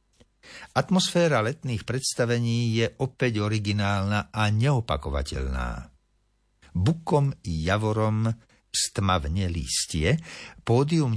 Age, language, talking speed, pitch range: 60-79, Slovak, 75 wpm, 95-130 Hz